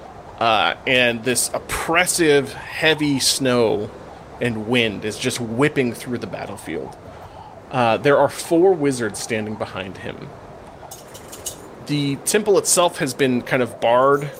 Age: 30-49